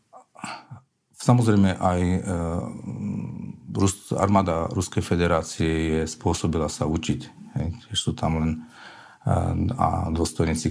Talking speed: 90 wpm